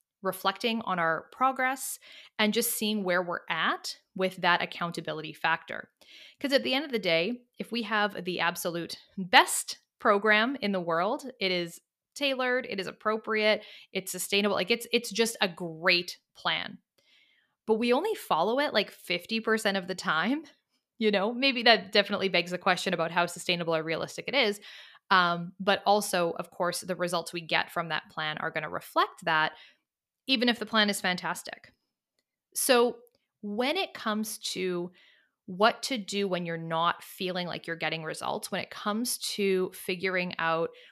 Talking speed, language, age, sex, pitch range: 170 wpm, English, 20-39, female, 175-230 Hz